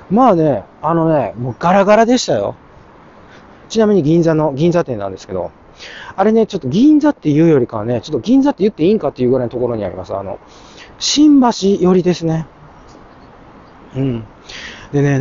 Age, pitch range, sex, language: 40-59, 115-195 Hz, male, Japanese